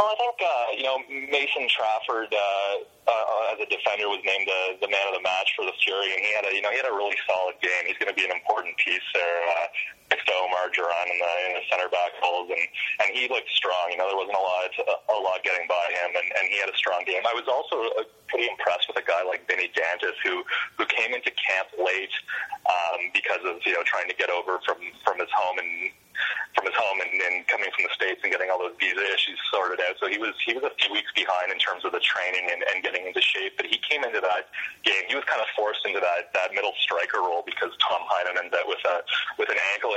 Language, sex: English, male